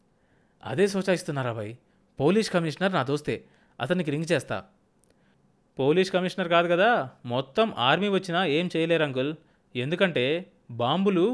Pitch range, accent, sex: 130-185 Hz, native, male